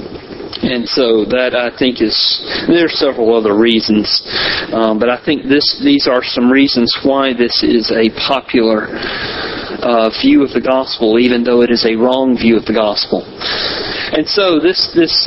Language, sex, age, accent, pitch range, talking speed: English, male, 40-59, American, 125-180 Hz, 175 wpm